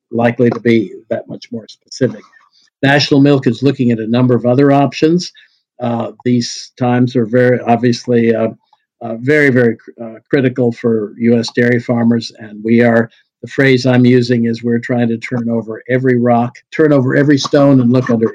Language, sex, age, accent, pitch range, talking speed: English, male, 50-69, American, 115-130 Hz, 180 wpm